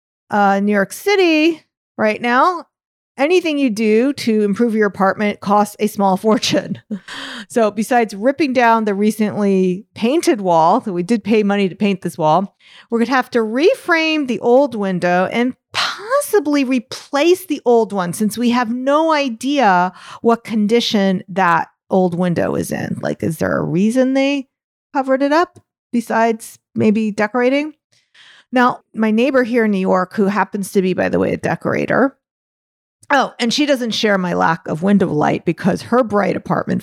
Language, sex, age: English, female, 40-59